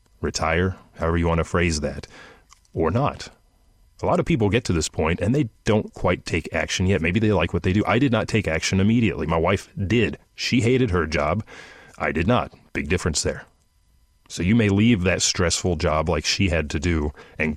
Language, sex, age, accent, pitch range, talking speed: English, male, 30-49, American, 80-100 Hz, 210 wpm